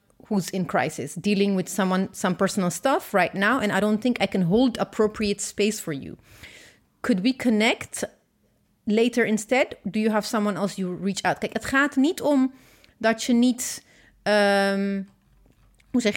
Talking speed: 165 wpm